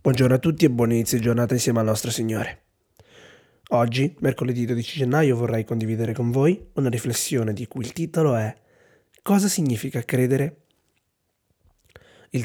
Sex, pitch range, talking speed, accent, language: male, 125-155 Hz, 150 wpm, native, Italian